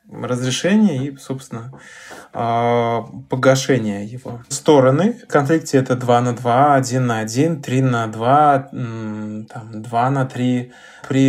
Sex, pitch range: male, 120-150 Hz